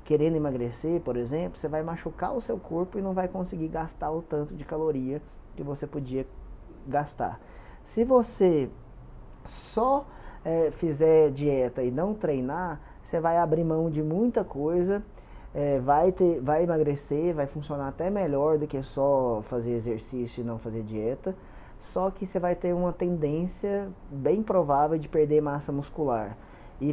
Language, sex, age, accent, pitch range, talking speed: Portuguese, male, 20-39, Brazilian, 130-165 Hz, 150 wpm